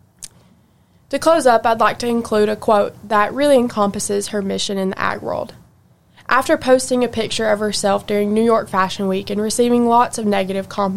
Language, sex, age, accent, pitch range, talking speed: English, female, 20-39, American, 200-235 Hz, 185 wpm